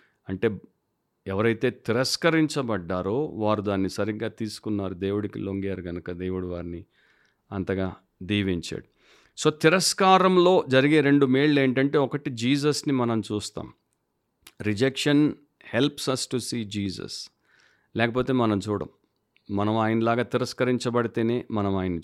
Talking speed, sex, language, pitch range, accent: 105 wpm, male, Telugu, 115-150 Hz, native